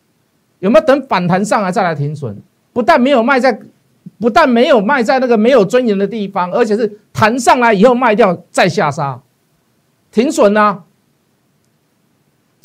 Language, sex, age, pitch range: Chinese, male, 50-69, 165-270 Hz